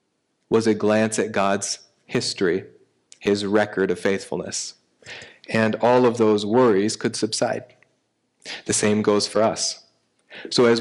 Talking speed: 135 wpm